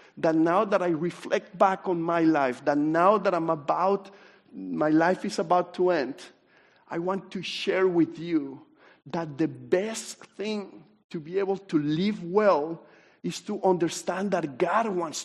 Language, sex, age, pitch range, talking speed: English, male, 50-69, 155-195 Hz, 165 wpm